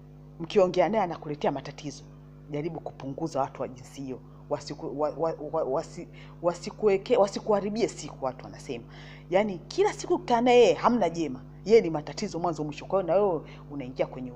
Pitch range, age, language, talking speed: 145-230 Hz, 40-59, English, 140 wpm